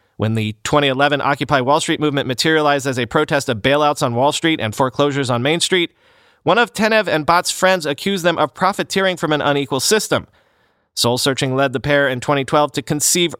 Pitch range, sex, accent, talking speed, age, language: 135-180 Hz, male, American, 195 wpm, 30-49, English